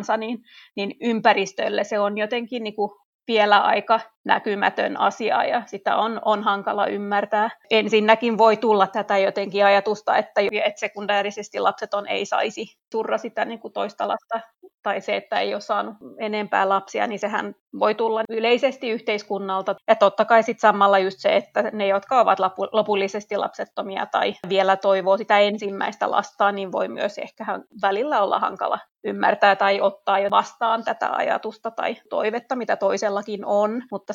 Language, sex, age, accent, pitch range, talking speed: Finnish, female, 30-49, native, 200-220 Hz, 155 wpm